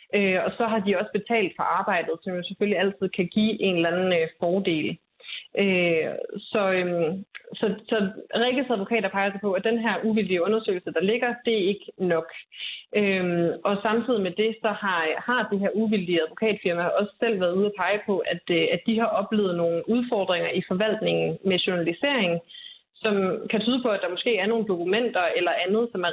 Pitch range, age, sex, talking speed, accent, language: 180-220 Hz, 30-49, female, 180 wpm, native, Danish